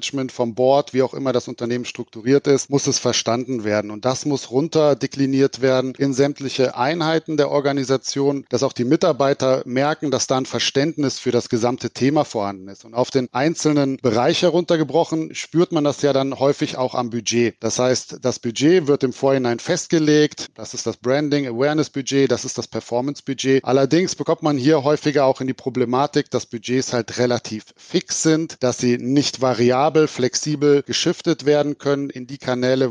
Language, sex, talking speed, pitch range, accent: German, male, 175 wpm, 125-150 Hz, German